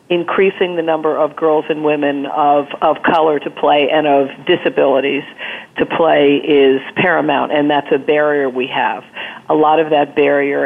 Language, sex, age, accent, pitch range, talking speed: English, female, 50-69, American, 145-170 Hz, 170 wpm